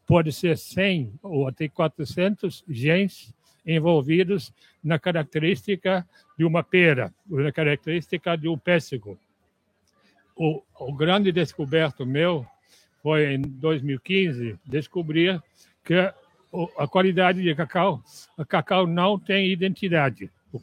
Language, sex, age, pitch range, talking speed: Portuguese, male, 60-79, 150-180 Hz, 110 wpm